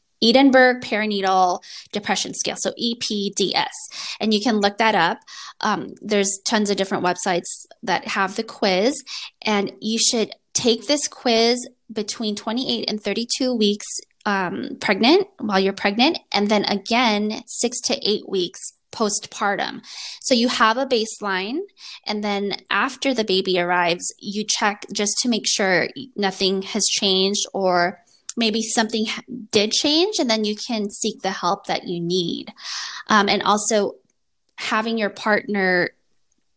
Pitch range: 195-235 Hz